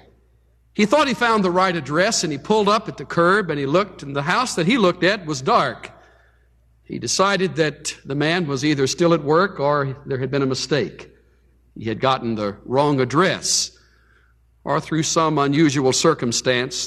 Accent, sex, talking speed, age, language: American, male, 190 wpm, 60-79, English